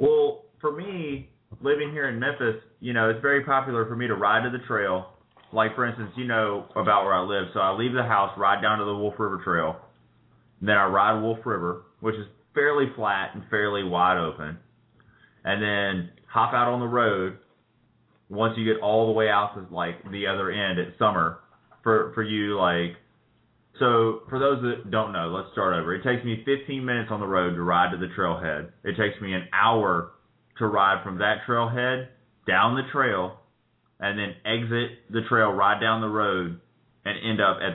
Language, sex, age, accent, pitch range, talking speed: English, male, 20-39, American, 100-120 Hz, 200 wpm